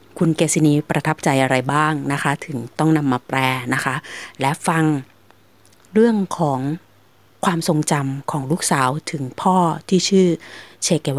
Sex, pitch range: female, 135-170 Hz